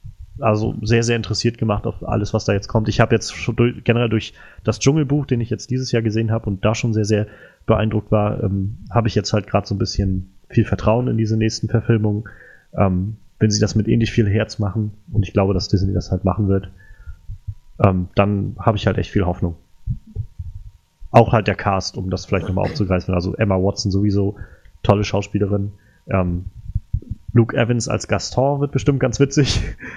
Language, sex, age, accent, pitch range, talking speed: German, male, 30-49, German, 95-115 Hz, 195 wpm